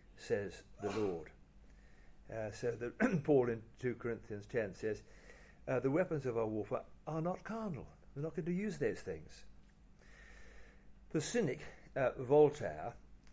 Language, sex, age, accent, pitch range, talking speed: English, male, 60-79, British, 95-130 Hz, 145 wpm